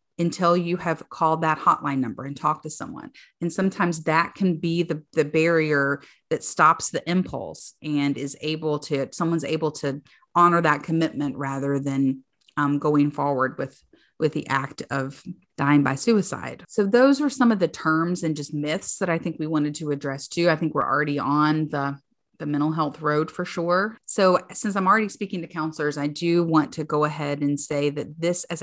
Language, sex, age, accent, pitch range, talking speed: English, female, 30-49, American, 140-170 Hz, 195 wpm